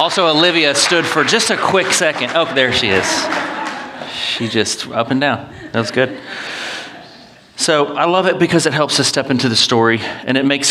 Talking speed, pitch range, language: 195 wpm, 120-150 Hz, English